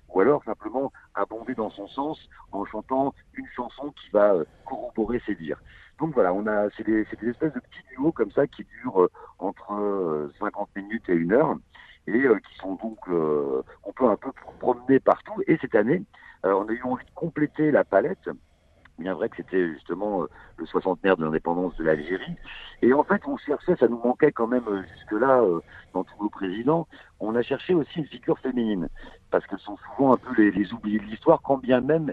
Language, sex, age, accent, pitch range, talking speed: French, male, 60-79, French, 100-145 Hz, 200 wpm